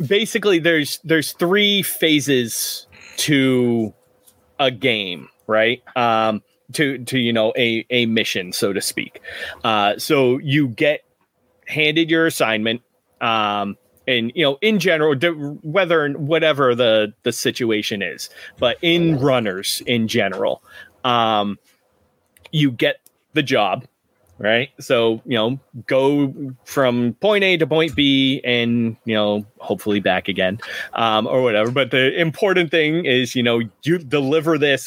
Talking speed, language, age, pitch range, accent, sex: 135 wpm, English, 30-49, 115-155 Hz, American, male